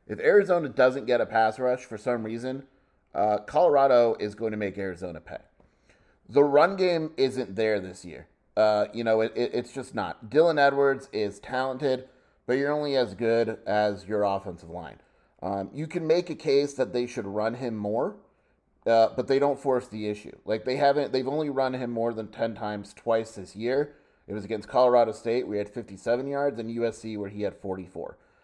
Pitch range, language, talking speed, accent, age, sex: 105-130 Hz, English, 195 wpm, American, 30-49, male